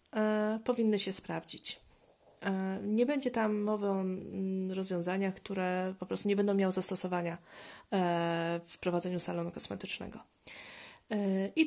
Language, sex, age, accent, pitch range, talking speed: Polish, female, 20-39, native, 180-215 Hz, 110 wpm